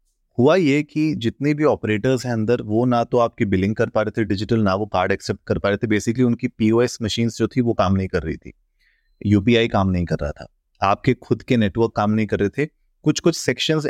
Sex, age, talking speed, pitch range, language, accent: male, 30-49, 235 wpm, 105-130 Hz, Hindi, native